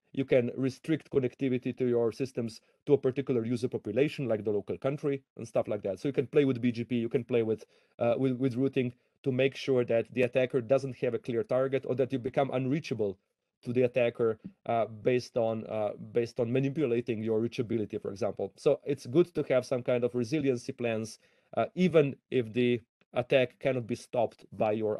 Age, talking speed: 30-49, 200 wpm